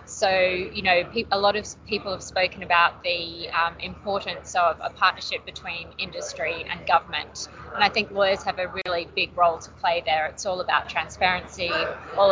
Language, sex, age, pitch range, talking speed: English, female, 30-49, 170-205 Hz, 180 wpm